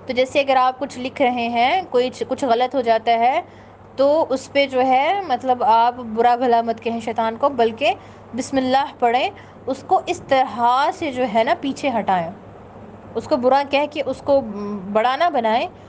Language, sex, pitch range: Urdu, female, 235-275 Hz